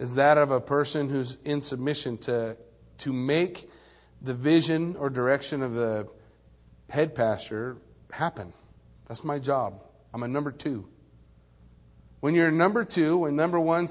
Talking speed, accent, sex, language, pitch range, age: 150 wpm, American, male, English, 115-170 Hz, 40-59